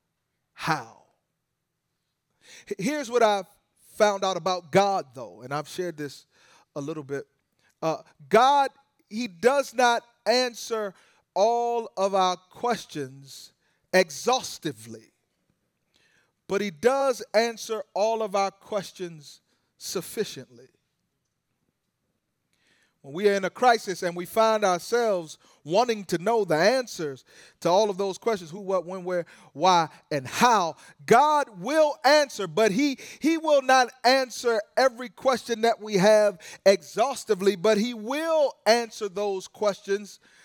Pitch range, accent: 180-240 Hz, American